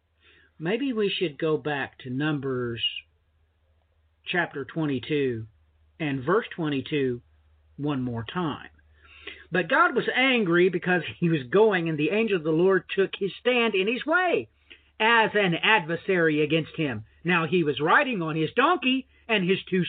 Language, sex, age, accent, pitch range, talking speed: English, male, 50-69, American, 115-180 Hz, 150 wpm